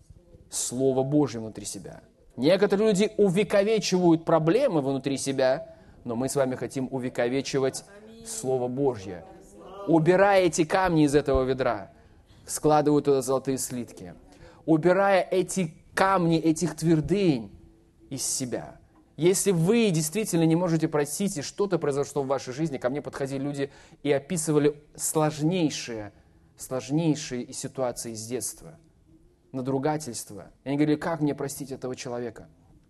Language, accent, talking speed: Russian, native, 120 wpm